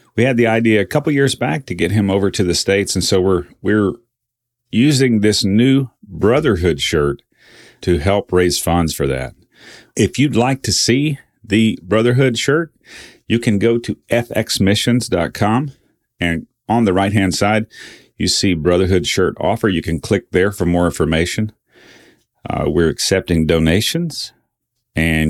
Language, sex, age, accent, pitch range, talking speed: English, male, 40-59, American, 90-120 Hz, 155 wpm